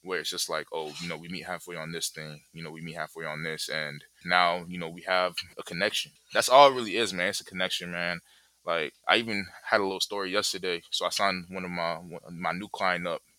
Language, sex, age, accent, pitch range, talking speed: English, male, 20-39, American, 80-95 Hz, 255 wpm